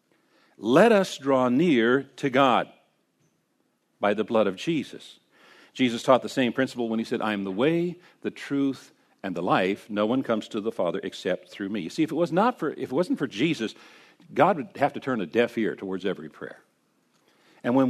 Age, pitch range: 50-69, 115-165 Hz